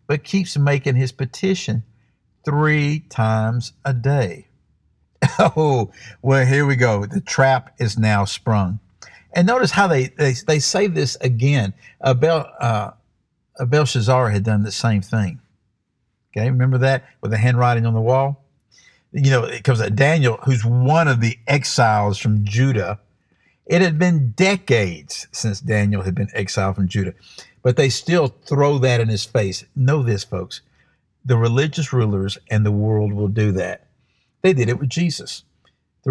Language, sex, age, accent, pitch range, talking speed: English, male, 50-69, American, 105-145 Hz, 155 wpm